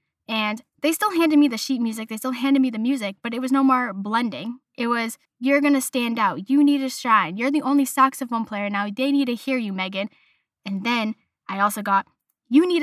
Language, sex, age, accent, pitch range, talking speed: English, female, 10-29, American, 215-280 Hz, 235 wpm